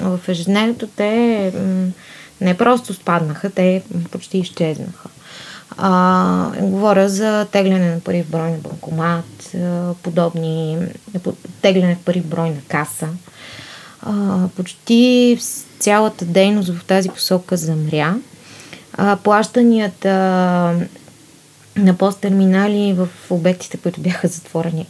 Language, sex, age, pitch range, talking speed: Bulgarian, female, 20-39, 170-220 Hz, 105 wpm